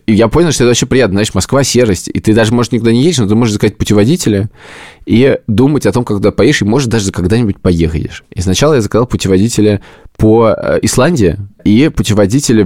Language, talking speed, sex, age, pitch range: Russian, 200 wpm, male, 20-39, 90-115 Hz